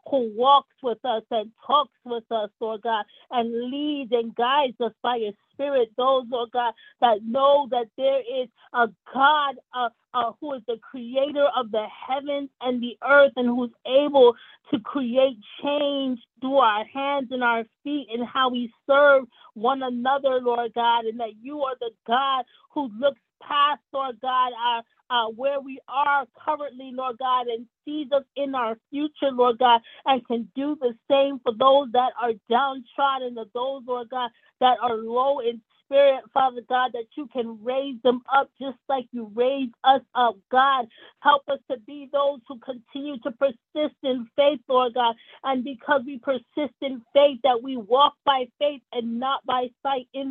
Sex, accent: female, American